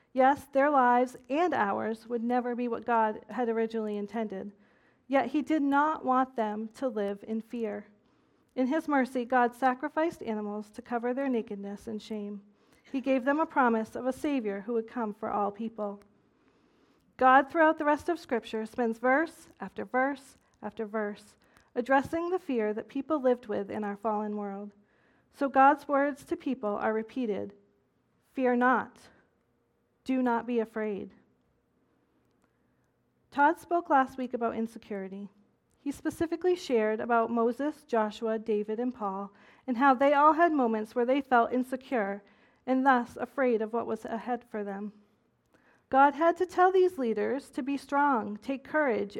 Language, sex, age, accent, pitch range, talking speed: English, female, 40-59, American, 220-275 Hz, 160 wpm